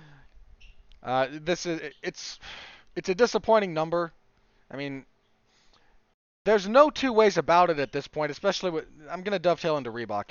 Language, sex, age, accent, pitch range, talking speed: English, male, 40-59, American, 140-185 Hz, 155 wpm